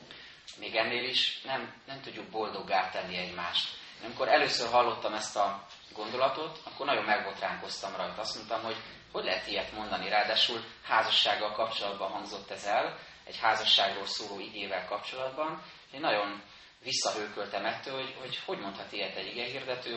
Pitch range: 100-125 Hz